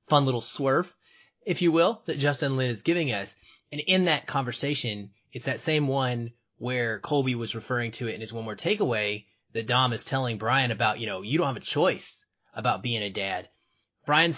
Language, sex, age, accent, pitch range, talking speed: English, male, 30-49, American, 110-150 Hz, 205 wpm